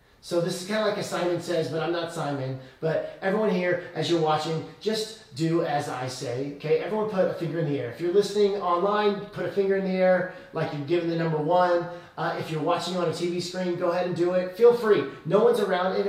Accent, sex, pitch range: American, male, 160-200 Hz